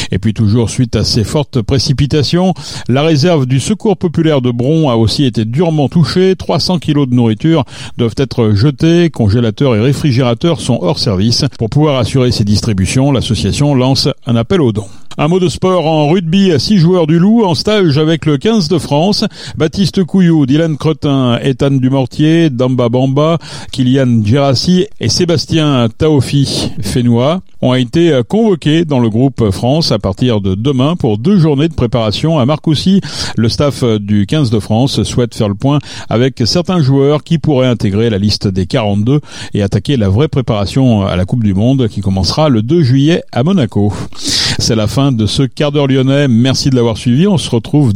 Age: 60-79